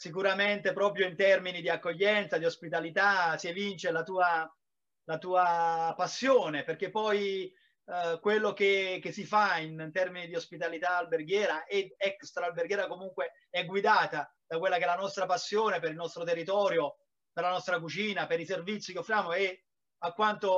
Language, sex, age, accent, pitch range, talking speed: Italian, male, 30-49, native, 175-205 Hz, 165 wpm